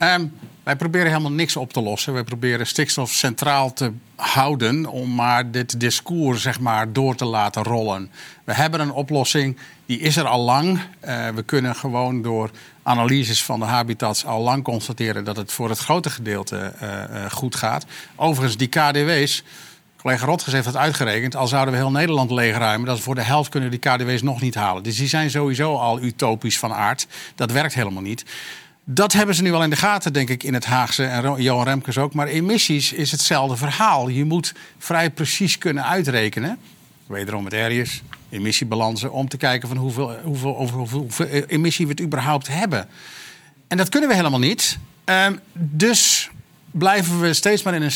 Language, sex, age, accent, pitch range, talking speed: Dutch, male, 50-69, Dutch, 125-160 Hz, 190 wpm